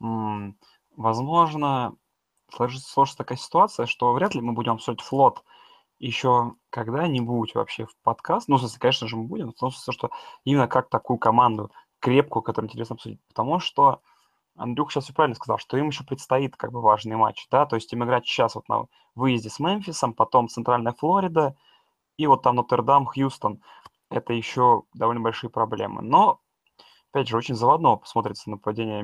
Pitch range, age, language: 110-135 Hz, 20-39, Russian